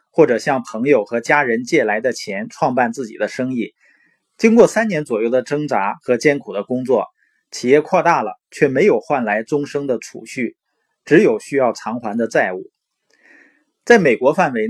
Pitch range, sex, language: 125-185 Hz, male, Chinese